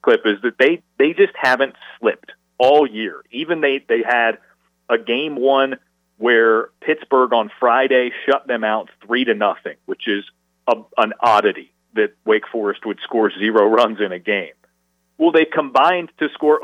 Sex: male